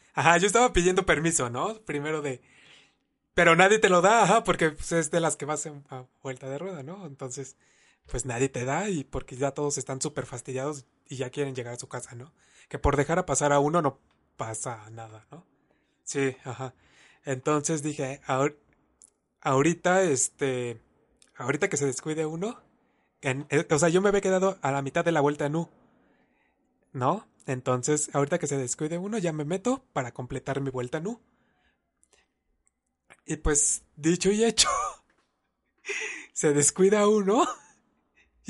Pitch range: 135-185 Hz